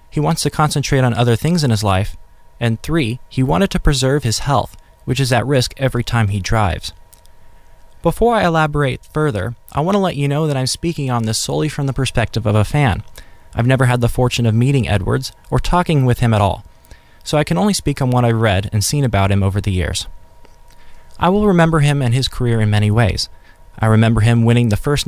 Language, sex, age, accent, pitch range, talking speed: English, male, 20-39, American, 105-145 Hz, 225 wpm